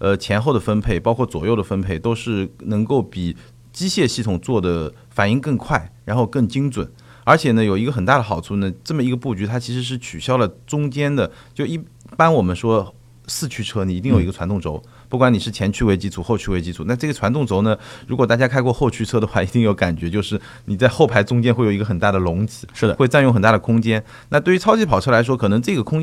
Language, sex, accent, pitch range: Chinese, male, native, 100-130 Hz